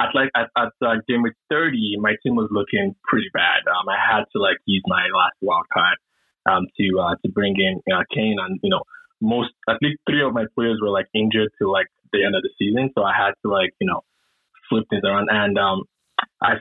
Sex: male